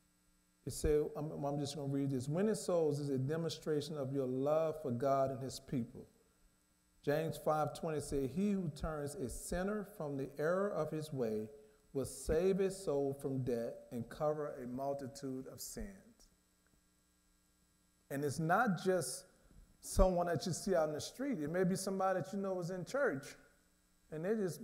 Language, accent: English, American